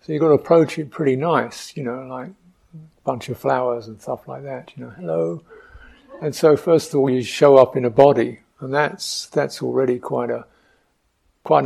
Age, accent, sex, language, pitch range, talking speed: 50-69, British, male, English, 115-140 Hz, 205 wpm